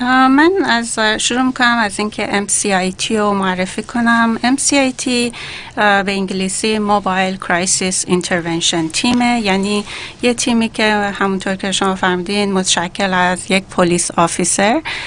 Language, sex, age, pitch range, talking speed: Persian, female, 30-49, 185-225 Hz, 120 wpm